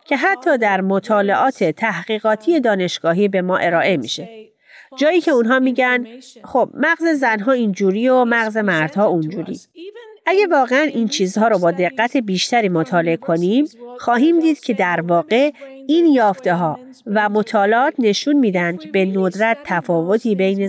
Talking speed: 140 wpm